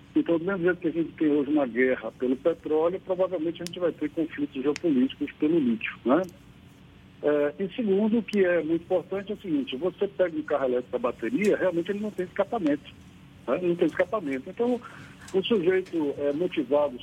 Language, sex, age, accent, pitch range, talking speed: Portuguese, male, 60-79, Brazilian, 145-205 Hz, 185 wpm